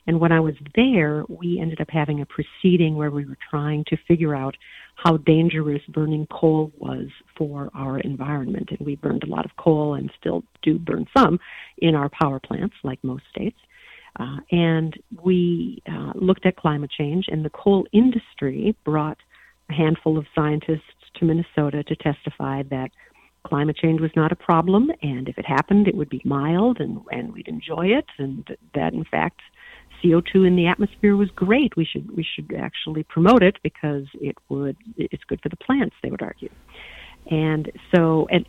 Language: English